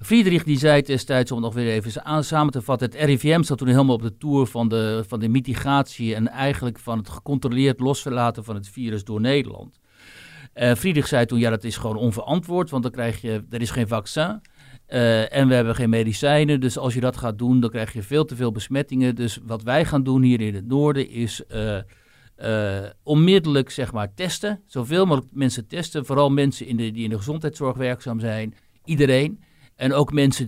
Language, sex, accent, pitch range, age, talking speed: Dutch, male, Dutch, 115-140 Hz, 60-79, 205 wpm